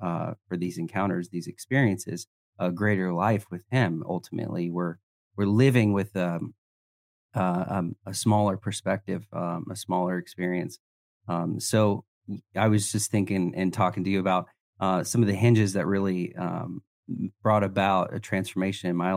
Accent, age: American, 30-49